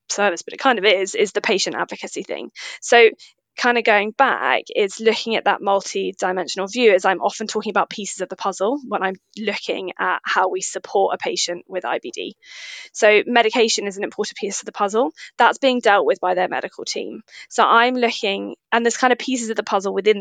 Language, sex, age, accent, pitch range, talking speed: English, female, 20-39, British, 190-240 Hz, 210 wpm